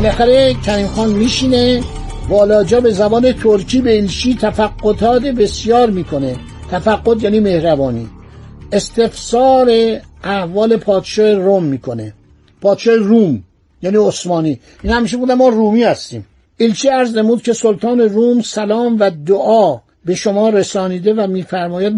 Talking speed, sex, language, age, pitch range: 125 wpm, male, Persian, 60-79, 190-230 Hz